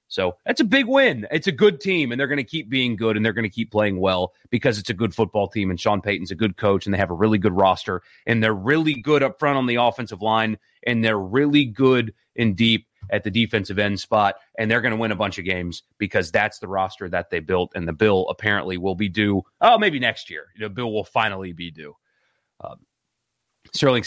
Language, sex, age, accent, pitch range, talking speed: English, male, 30-49, American, 105-140 Hz, 245 wpm